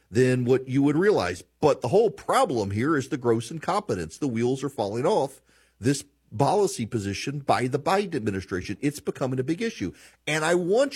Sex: male